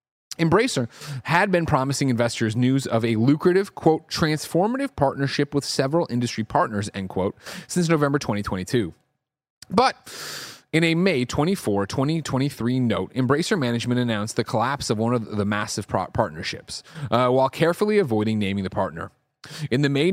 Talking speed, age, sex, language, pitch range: 145 wpm, 30-49, male, English, 110-155 Hz